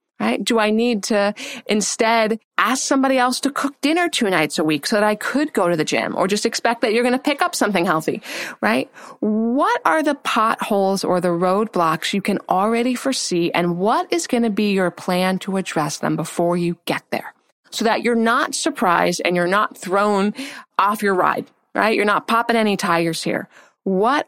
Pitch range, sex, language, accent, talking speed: 190-280 Hz, female, English, American, 205 wpm